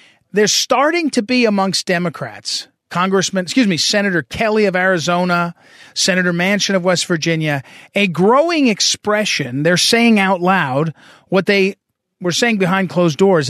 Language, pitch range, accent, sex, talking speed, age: English, 170-225 Hz, American, male, 140 wpm, 40-59